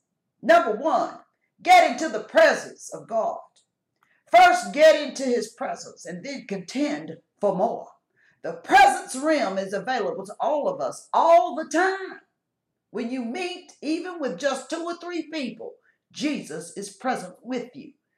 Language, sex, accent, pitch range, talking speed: English, female, American, 210-345 Hz, 150 wpm